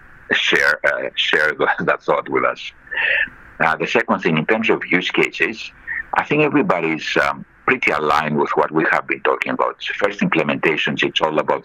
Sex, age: male, 60-79